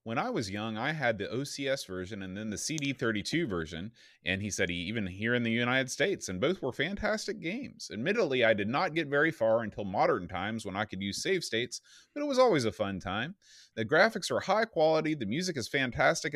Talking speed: 225 wpm